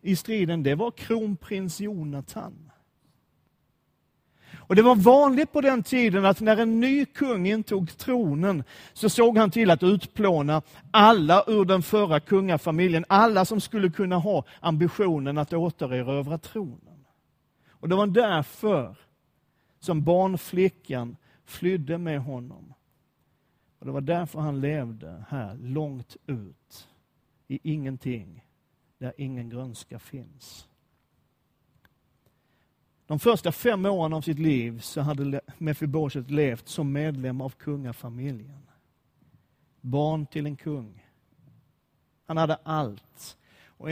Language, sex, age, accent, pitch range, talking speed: Swedish, male, 40-59, native, 135-185 Hz, 120 wpm